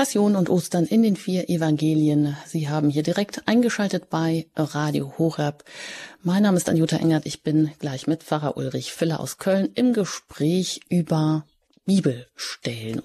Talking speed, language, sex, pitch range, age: 150 wpm, German, female, 155-195 Hz, 30-49